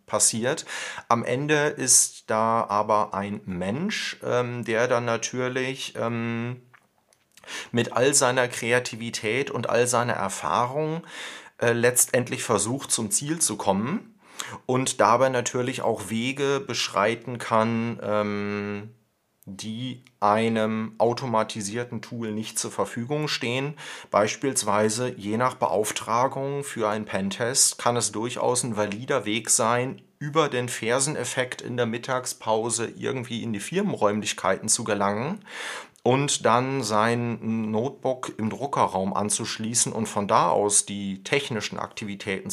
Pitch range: 105-125 Hz